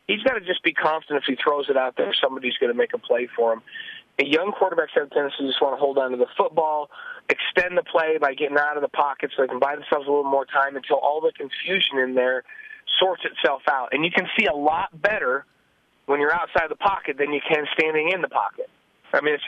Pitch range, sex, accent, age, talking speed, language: 135-205 Hz, male, American, 30-49, 255 wpm, English